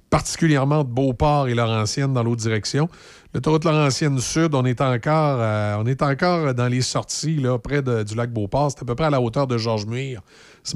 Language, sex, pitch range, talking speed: French, male, 110-150 Hz, 225 wpm